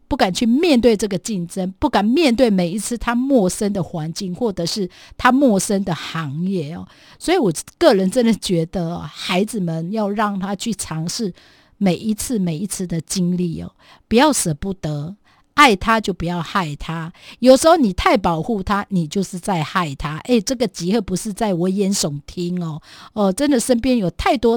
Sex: female